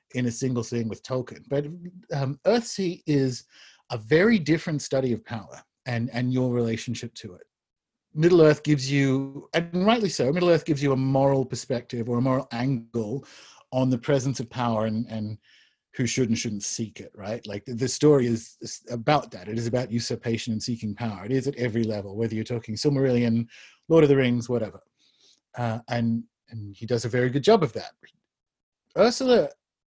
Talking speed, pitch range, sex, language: 190 wpm, 115-145 Hz, male, English